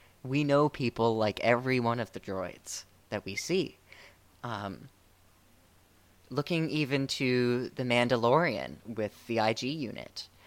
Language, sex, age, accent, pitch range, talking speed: English, female, 20-39, American, 100-140 Hz, 125 wpm